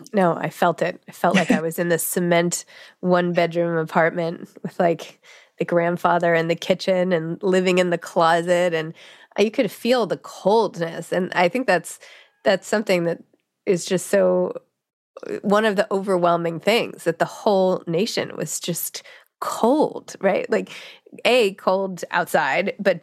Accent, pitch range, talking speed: American, 170-205 Hz, 160 wpm